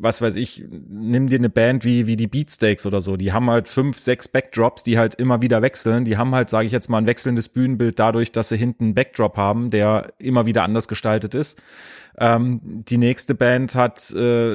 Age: 30-49